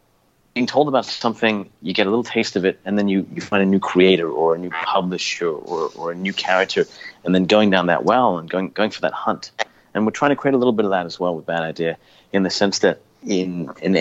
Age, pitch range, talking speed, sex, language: 40-59, 90-115 Hz, 265 wpm, male, English